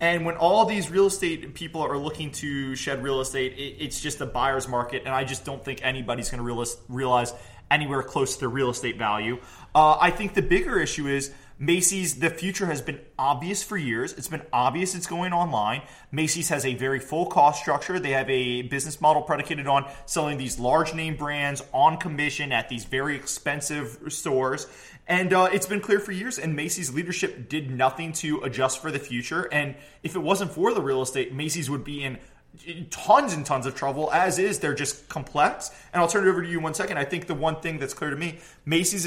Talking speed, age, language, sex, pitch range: 215 wpm, 20-39, English, male, 130-165 Hz